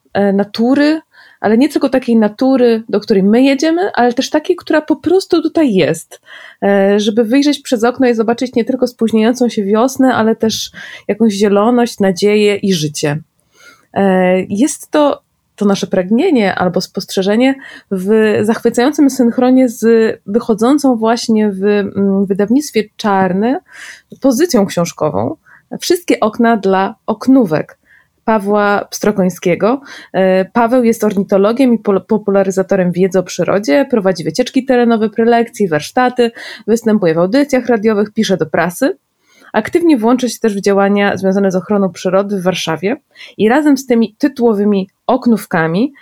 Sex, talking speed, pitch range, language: female, 130 wpm, 195-250 Hz, Polish